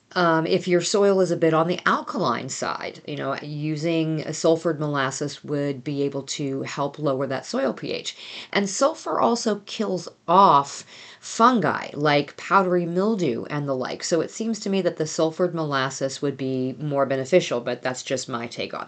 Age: 40-59